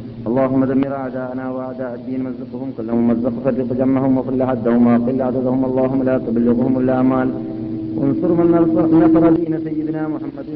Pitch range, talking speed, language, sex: 120-135 Hz, 135 wpm, Malayalam, male